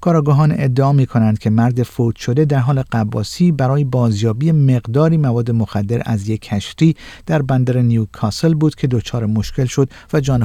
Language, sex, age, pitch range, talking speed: Persian, male, 50-69, 110-140 Hz, 160 wpm